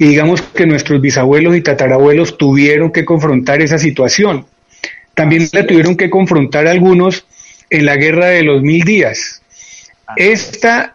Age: 30-49